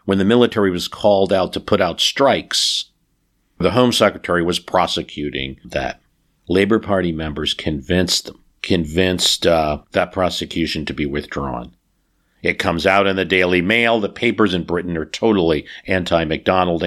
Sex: male